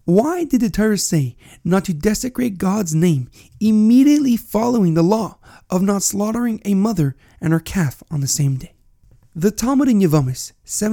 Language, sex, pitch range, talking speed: English, male, 160-210 Hz, 165 wpm